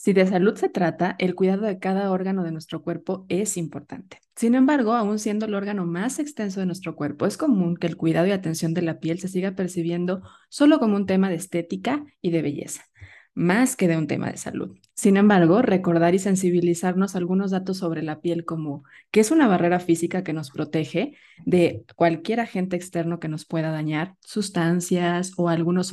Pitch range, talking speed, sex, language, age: 165-200 Hz, 195 wpm, female, Spanish, 20-39